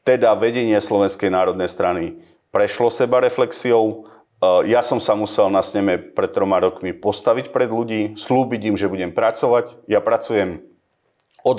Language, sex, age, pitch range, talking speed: Slovak, male, 40-59, 100-130 Hz, 145 wpm